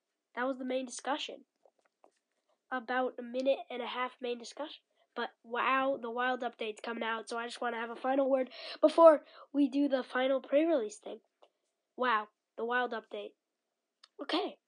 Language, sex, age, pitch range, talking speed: English, female, 20-39, 230-270 Hz, 170 wpm